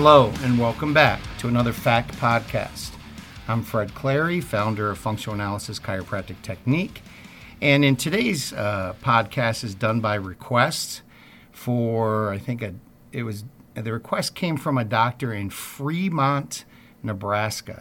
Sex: male